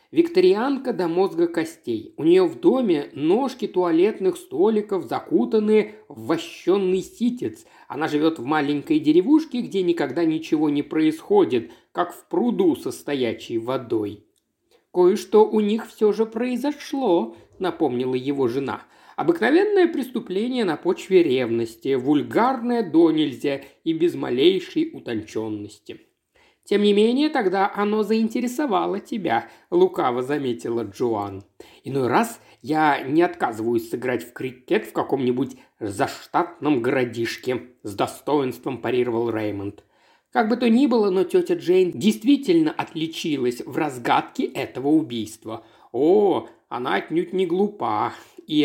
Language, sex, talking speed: Russian, male, 120 wpm